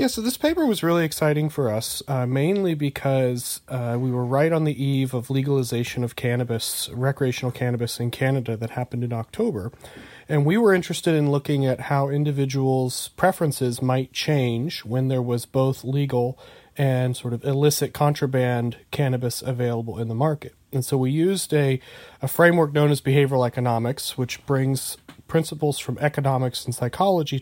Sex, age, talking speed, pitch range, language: male, 30-49, 165 wpm, 125-150 Hz, English